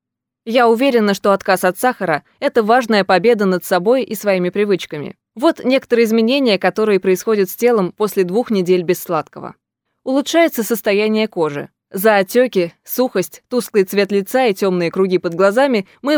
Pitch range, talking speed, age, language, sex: 195-245 Hz, 150 wpm, 20-39, Russian, female